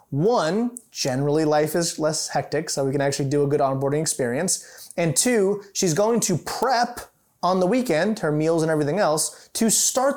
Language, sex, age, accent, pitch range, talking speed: English, male, 20-39, American, 145-190 Hz, 185 wpm